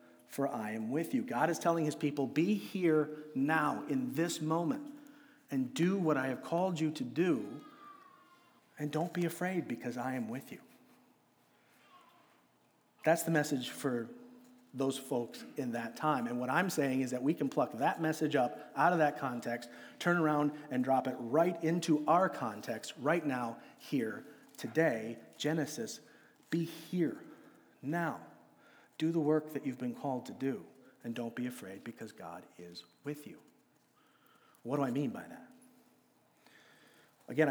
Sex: male